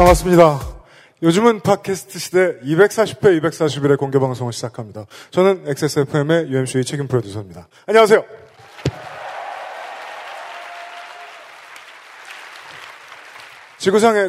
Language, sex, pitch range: Korean, male, 135-185 Hz